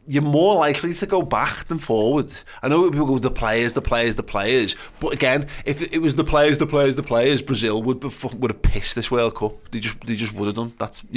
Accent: British